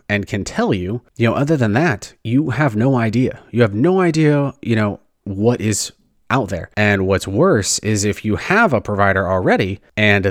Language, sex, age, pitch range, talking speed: English, male, 30-49, 95-120 Hz, 200 wpm